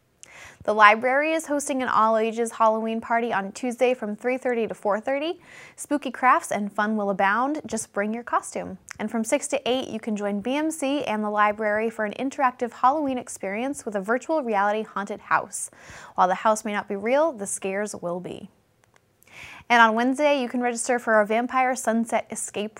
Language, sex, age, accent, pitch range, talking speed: English, female, 20-39, American, 210-260 Hz, 180 wpm